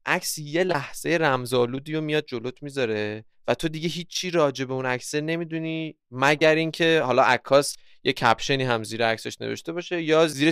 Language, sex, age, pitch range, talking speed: Persian, male, 20-39, 115-150 Hz, 175 wpm